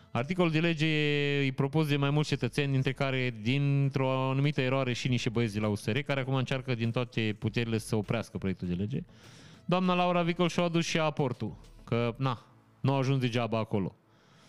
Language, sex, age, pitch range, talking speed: Romanian, male, 30-49, 110-145 Hz, 185 wpm